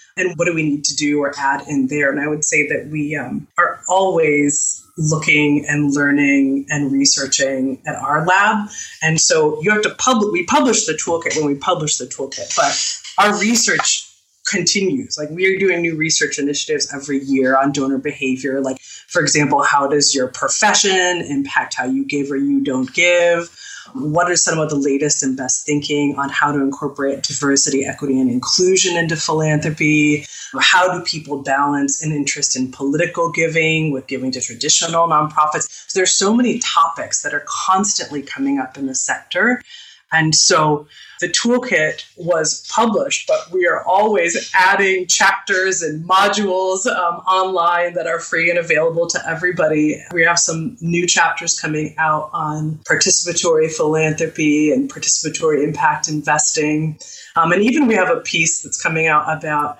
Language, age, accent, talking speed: English, 20-39, American, 170 wpm